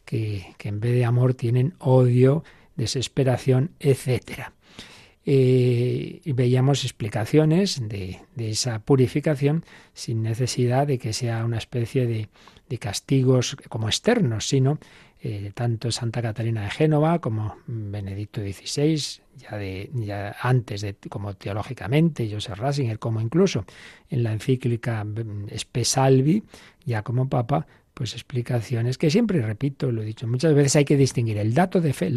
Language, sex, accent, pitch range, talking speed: Spanish, male, Spanish, 115-145 Hz, 140 wpm